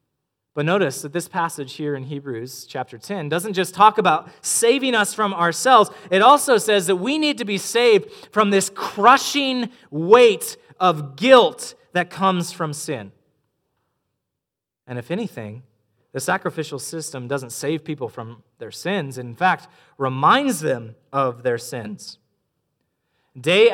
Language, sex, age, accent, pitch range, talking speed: English, male, 30-49, American, 150-215 Hz, 145 wpm